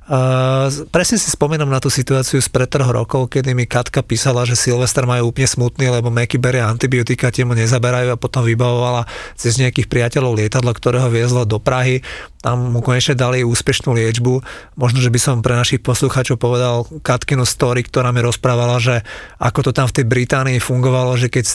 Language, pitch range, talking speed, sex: Slovak, 120-135 Hz, 185 wpm, male